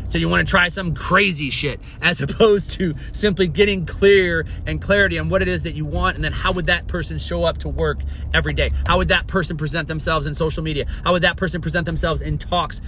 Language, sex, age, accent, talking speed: English, male, 30-49, American, 240 wpm